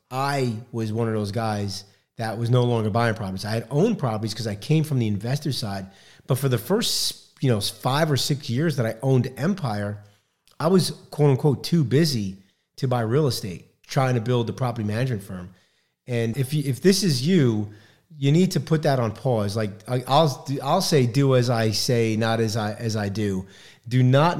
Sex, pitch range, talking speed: male, 110-135 Hz, 205 wpm